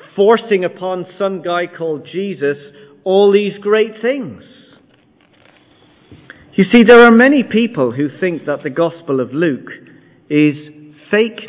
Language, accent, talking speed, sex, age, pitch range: English, British, 130 wpm, male, 40-59, 145-205 Hz